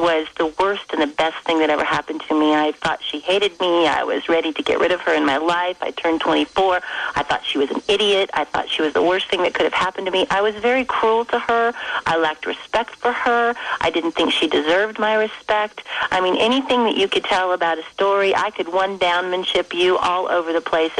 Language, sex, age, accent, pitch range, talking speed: English, female, 40-59, American, 165-205 Hz, 245 wpm